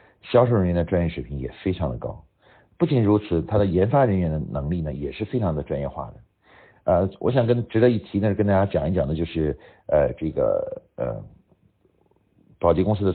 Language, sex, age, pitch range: Chinese, male, 50-69, 85-110 Hz